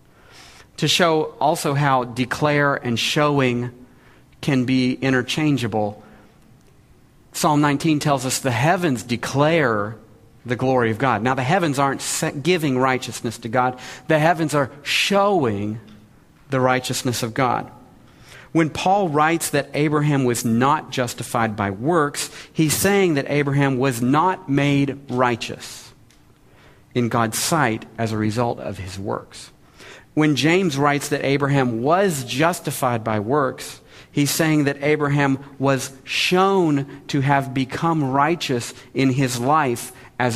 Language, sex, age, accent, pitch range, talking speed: English, male, 40-59, American, 120-145 Hz, 130 wpm